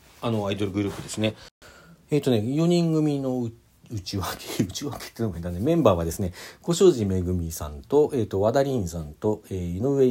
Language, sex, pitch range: Japanese, male, 90-140 Hz